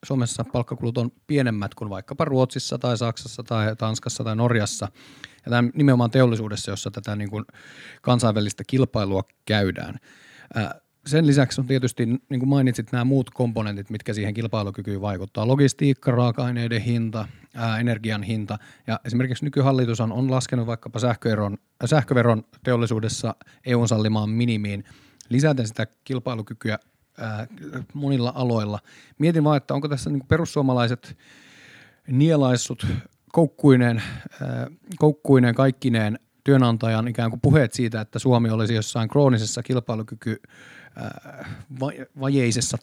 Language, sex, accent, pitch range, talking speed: Finnish, male, native, 110-130 Hz, 120 wpm